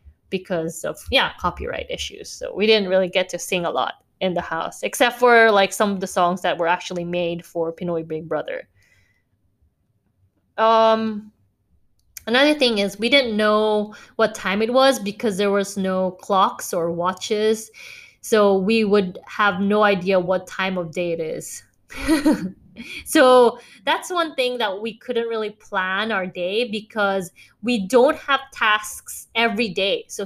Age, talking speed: 20-39, 160 wpm